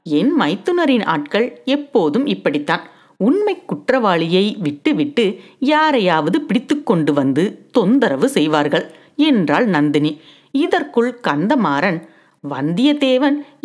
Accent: native